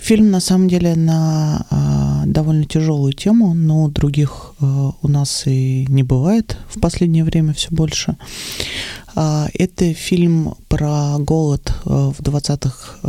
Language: Russian